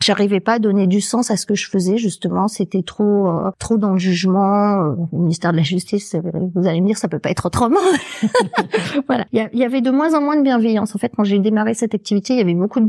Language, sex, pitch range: French, female, 190-230 Hz